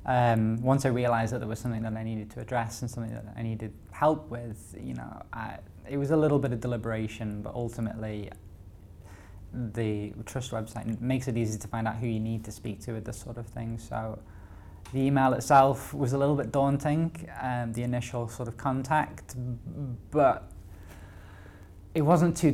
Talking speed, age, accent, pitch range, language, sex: 185 wpm, 20-39, British, 110-125 Hz, English, male